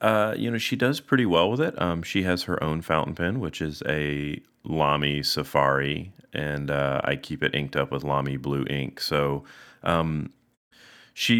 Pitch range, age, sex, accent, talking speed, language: 70-80 Hz, 30-49, male, American, 185 wpm, English